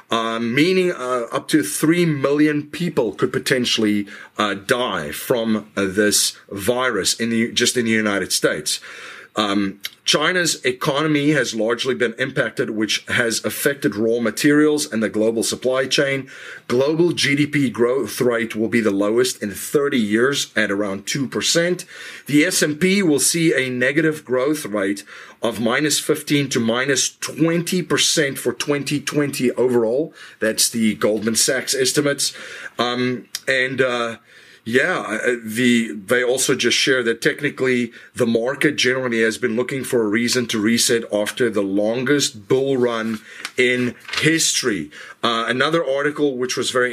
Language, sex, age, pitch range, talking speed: English, male, 30-49, 115-145 Hz, 140 wpm